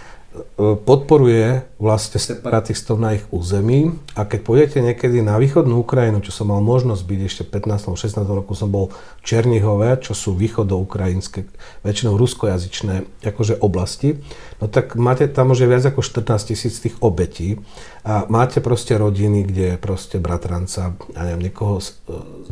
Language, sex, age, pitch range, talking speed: Slovak, male, 40-59, 100-125 Hz, 145 wpm